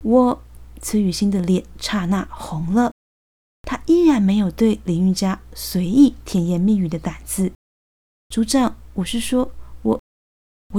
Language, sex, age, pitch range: Chinese, female, 20-39, 180-235 Hz